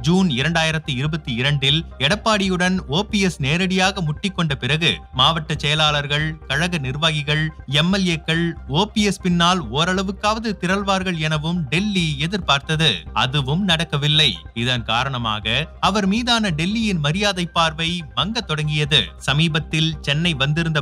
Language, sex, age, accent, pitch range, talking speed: Tamil, male, 30-49, native, 150-180 Hz, 100 wpm